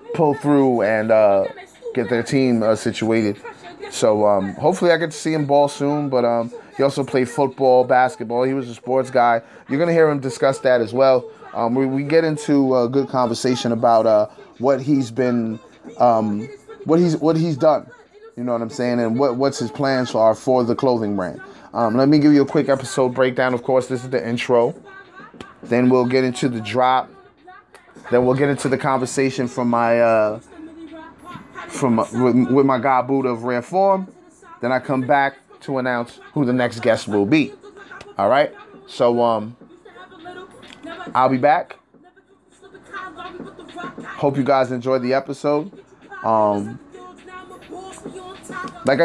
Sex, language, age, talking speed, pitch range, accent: male, English, 20-39, 175 wpm, 120-165 Hz, American